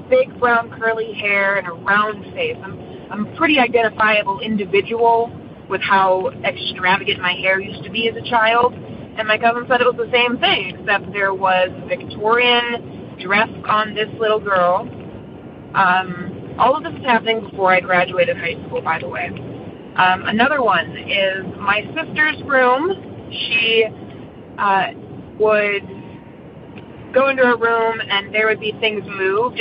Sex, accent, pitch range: female, American, 195-240 Hz